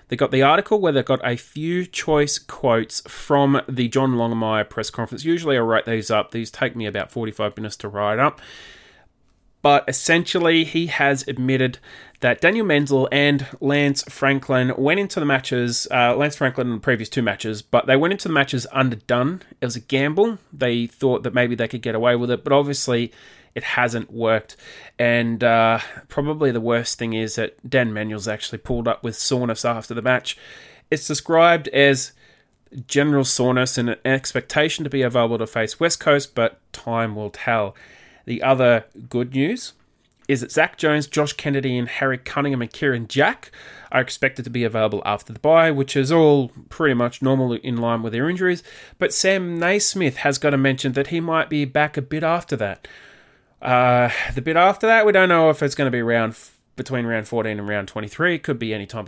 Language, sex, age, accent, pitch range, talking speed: English, male, 20-39, Australian, 115-145 Hz, 195 wpm